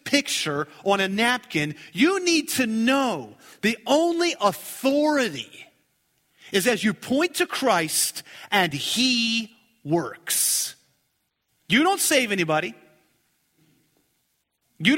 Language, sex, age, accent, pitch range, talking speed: English, male, 40-59, American, 170-285 Hz, 100 wpm